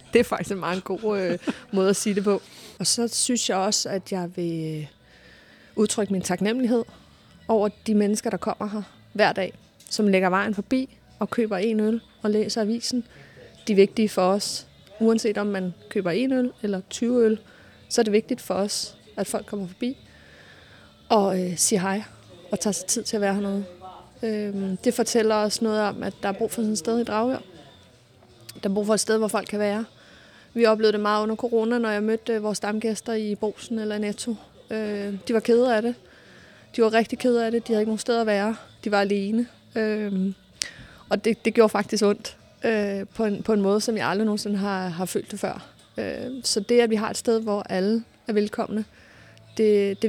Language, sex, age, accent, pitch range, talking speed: Danish, female, 30-49, native, 195-225 Hz, 200 wpm